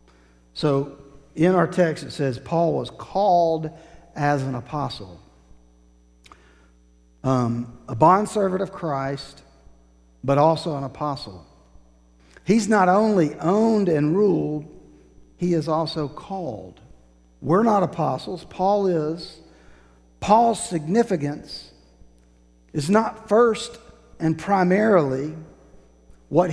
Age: 50-69